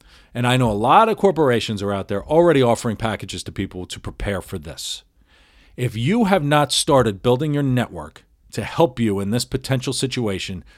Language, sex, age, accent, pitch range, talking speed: English, male, 40-59, American, 105-165 Hz, 190 wpm